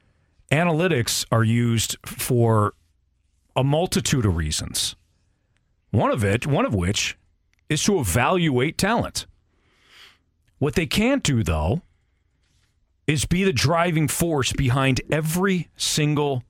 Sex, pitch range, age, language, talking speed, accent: male, 105-150 Hz, 40-59, English, 115 wpm, American